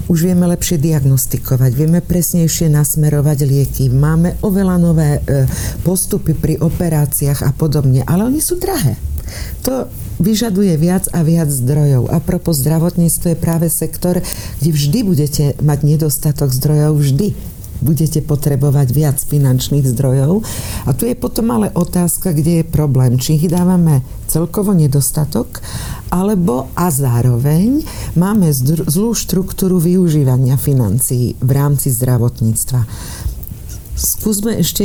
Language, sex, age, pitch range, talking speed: Slovak, female, 50-69, 135-180 Hz, 120 wpm